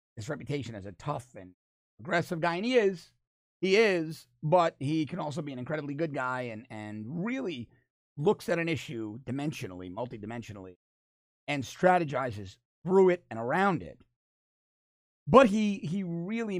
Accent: American